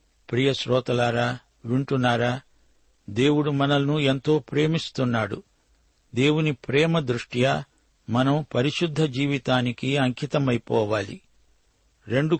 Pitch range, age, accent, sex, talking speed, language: 120-145 Hz, 60-79, native, male, 75 wpm, Telugu